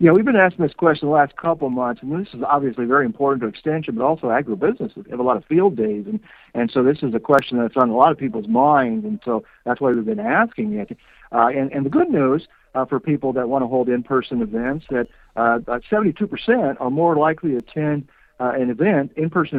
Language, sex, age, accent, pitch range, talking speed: English, male, 50-69, American, 125-190 Hz, 245 wpm